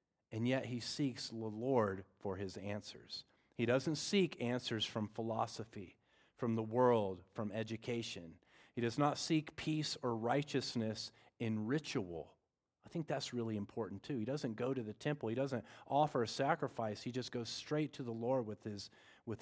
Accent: American